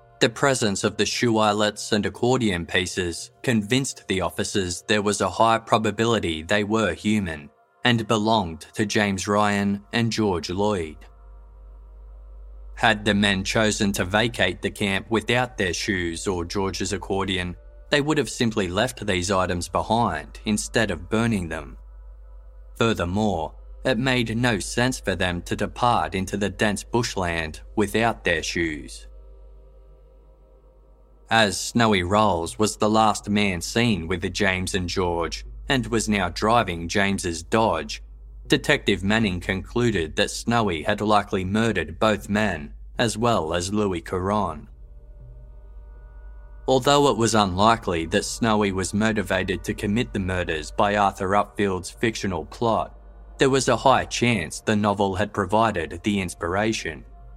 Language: English